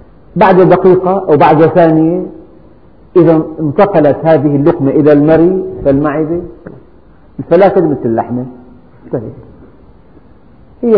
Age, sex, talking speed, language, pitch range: 50-69, male, 85 wpm, Arabic, 135-175 Hz